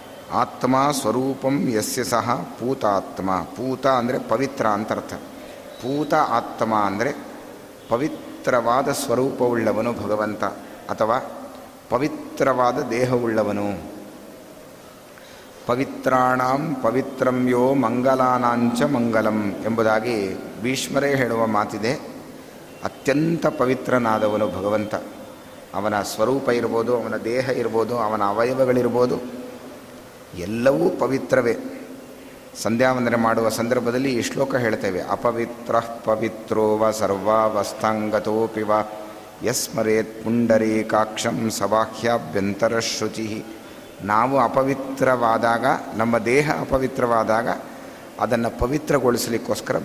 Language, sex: Kannada, male